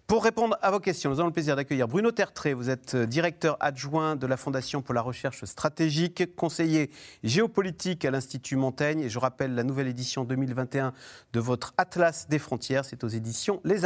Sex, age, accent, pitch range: male, 40-59, French, 125-170 Hz